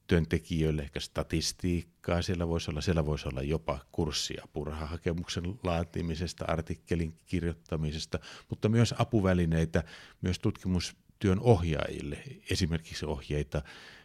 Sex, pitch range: male, 80-95 Hz